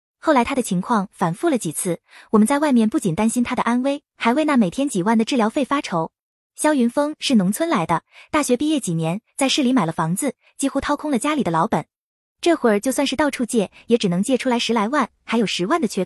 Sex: female